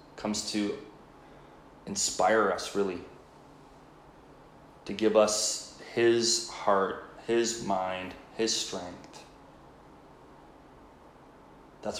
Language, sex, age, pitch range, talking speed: English, male, 30-49, 105-125 Hz, 75 wpm